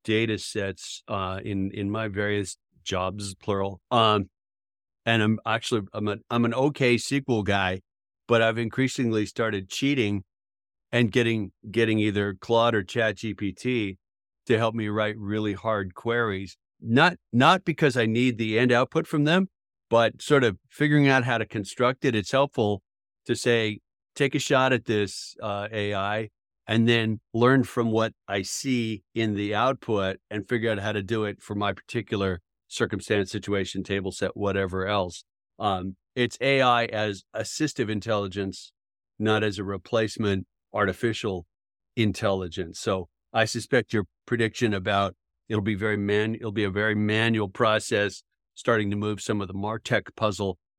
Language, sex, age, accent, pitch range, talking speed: English, male, 50-69, American, 100-115 Hz, 155 wpm